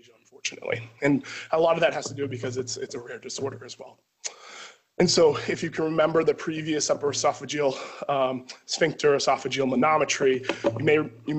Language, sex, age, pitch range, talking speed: English, male, 20-39, 130-150 Hz, 175 wpm